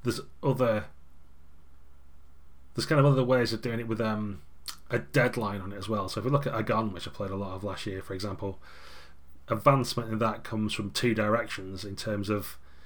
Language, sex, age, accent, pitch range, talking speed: English, male, 30-49, British, 100-115 Hz, 205 wpm